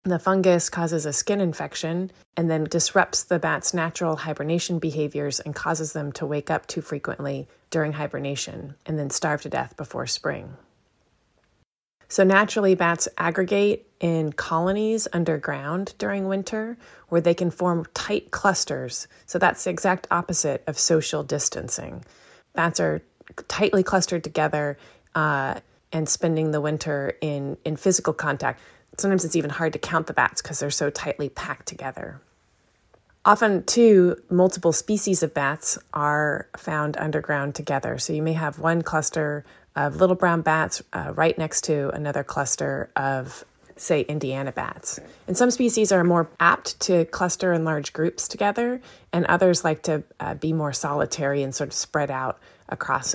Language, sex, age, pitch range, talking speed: English, female, 30-49, 150-180 Hz, 155 wpm